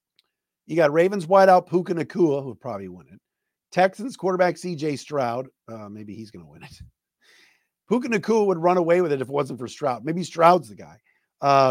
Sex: male